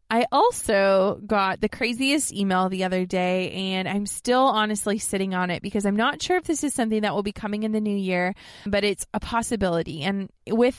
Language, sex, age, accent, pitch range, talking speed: English, female, 20-39, American, 190-230 Hz, 210 wpm